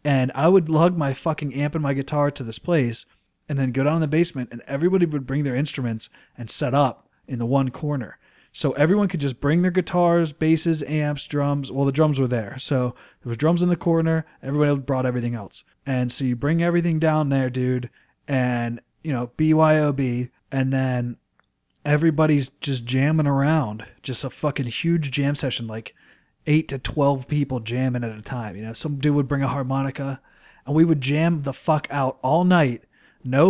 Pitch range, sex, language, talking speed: 130-155 Hz, male, English, 195 wpm